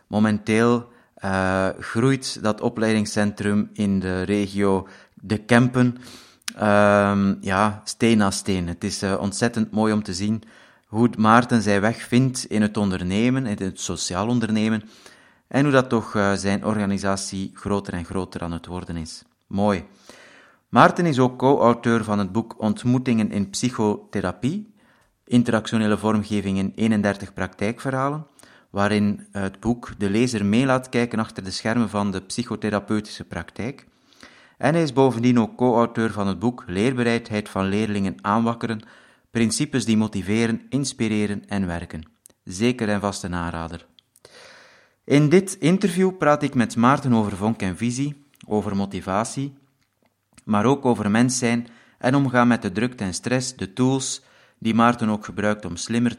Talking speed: 145 wpm